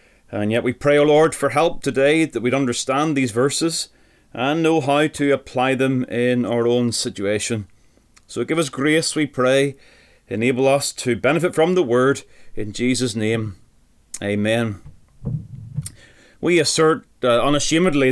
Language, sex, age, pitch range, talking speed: English, male, 30-49, 125-150 Hz, 150 wpm